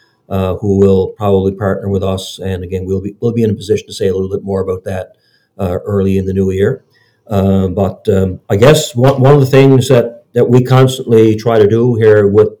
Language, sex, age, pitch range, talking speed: English, male, 50-69, 95-110 Hz, 235 wpm